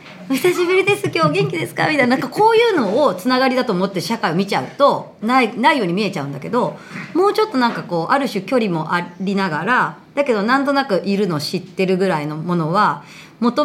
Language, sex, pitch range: Japanese, male, 175-275 Hz